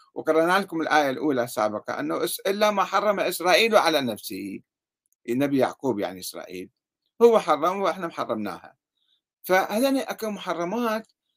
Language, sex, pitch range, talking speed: Arabic, male, 135-205 Hz, 125 wpm